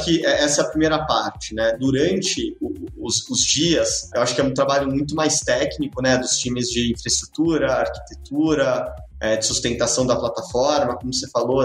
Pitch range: 120-145 Hz